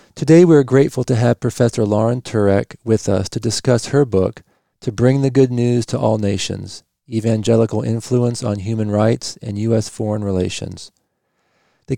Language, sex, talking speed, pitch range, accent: English, male, 165 wpm, 105-120 Hz, American